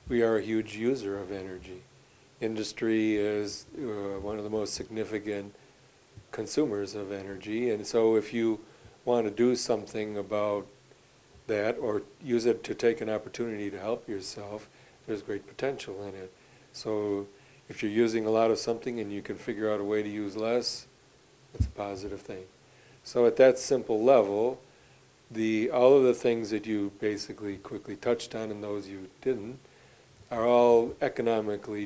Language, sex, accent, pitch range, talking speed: English, male, American, 105-120 Hz, 165 wpm